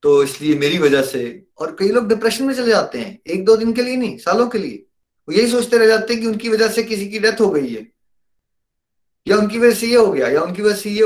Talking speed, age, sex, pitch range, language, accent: 270 wpm, 30-49, male, 135-200 Hz, Hindi, native